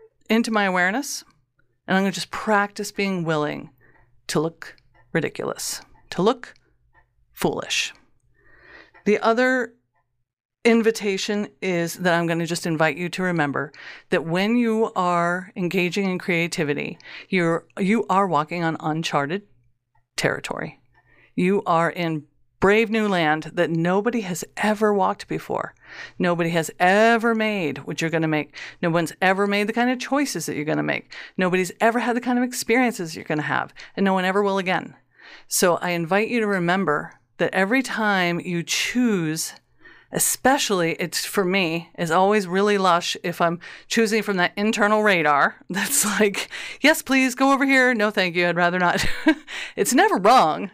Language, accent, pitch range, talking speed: English, American, 165-210 Hz, 155 wpm